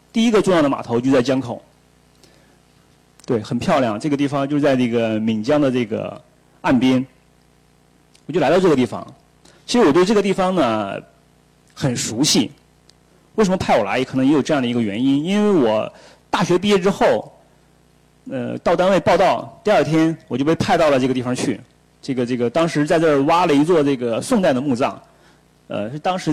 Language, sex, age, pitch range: Chinese, male, 30-49, 125-175 Hz